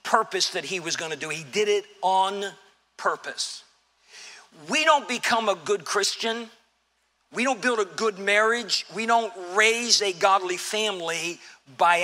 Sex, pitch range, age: male, 200-255 Hz, 50-69